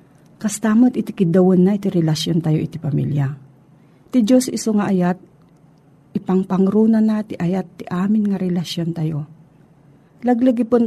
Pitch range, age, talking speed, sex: 165-215 Hz, 40-59, 120 wpm, female